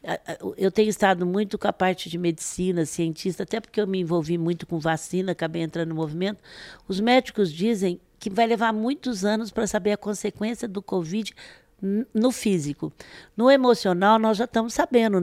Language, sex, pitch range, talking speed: Portuguese, female, 175-225 Hz, 175 wpm